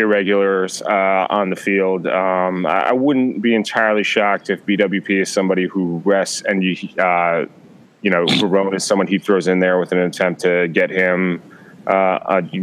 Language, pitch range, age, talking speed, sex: English, 90-105 Hz, 20-39, 180 wpm, male